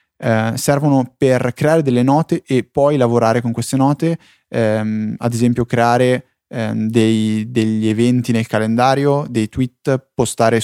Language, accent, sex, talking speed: Italian, native, male, 135 wpm